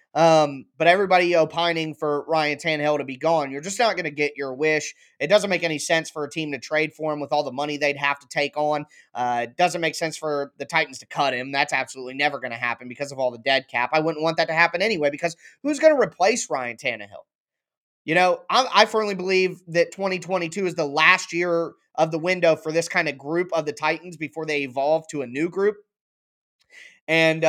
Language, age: English, 20-39